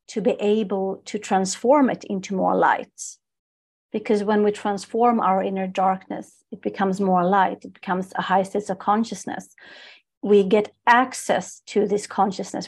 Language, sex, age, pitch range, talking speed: English, female, 40-59, 185-220 Hz, 155 wpm